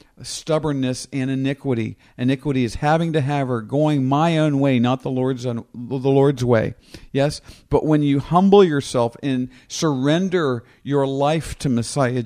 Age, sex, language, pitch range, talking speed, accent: 50-69, male, English, 130-165 Hz, 155 wpm, American